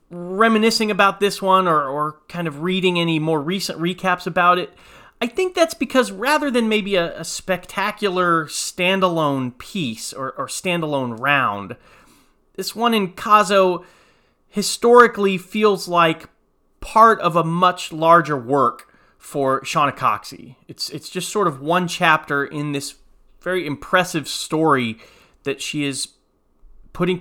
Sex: male